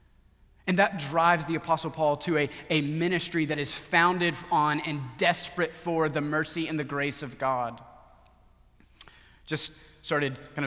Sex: male